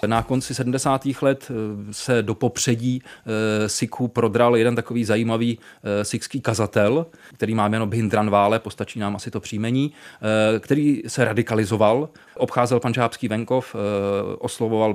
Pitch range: 105-120 Hz